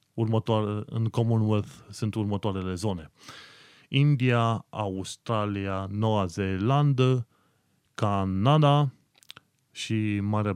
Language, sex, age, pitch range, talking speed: Romanian, male, 30-49, 95-120 Hz, 75 wpm